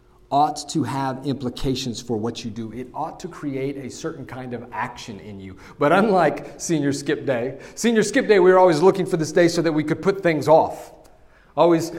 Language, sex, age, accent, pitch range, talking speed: English, male, 40-59, American, 130-170 Hz, 210 wpm